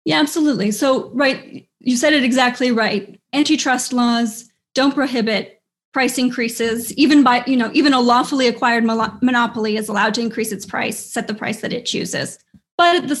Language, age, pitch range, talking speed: English, 30-49, 225-265 Hz, 175 wpm